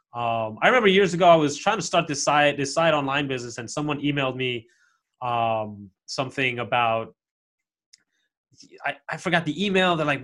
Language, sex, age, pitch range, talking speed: English, male, 20-39, 125-165 Hz, 175 wpm